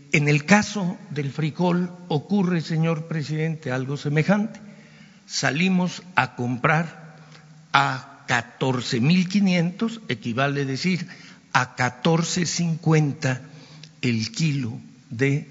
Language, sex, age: Spanish, male, 60-79